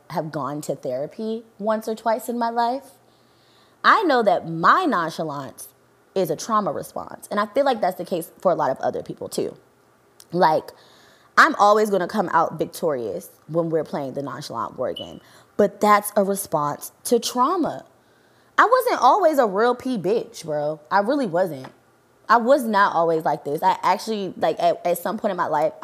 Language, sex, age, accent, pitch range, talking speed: English, female, 20-39, American, 160-205 Hz, 185 wpm